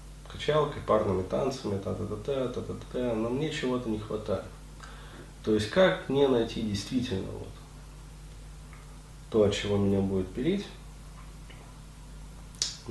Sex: male